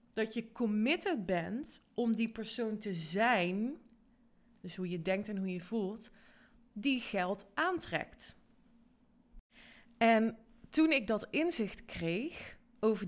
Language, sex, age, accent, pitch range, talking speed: Dutch, female, 20-39, Dutch, 200-245 Hz, 125 wpm